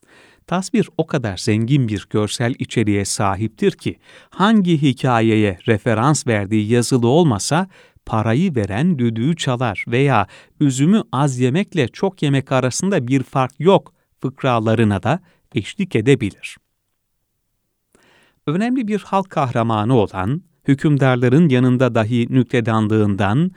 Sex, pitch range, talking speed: male, 115-160 Hz, 105 wpm